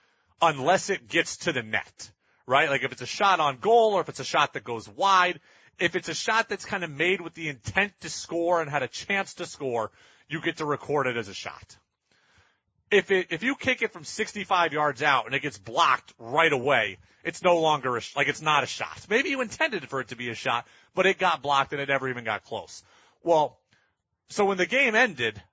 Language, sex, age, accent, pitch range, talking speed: English, male, 30-49, American, 140-190 Hz, 235 wpm